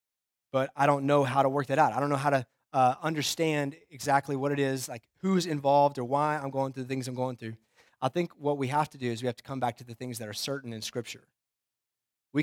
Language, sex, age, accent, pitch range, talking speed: English, male, 20-39, American, 120-150 Hz, 265 wpm